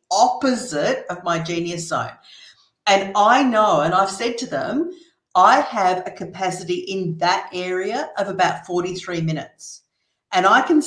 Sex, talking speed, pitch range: female, 150 wpm, 175-215 Hz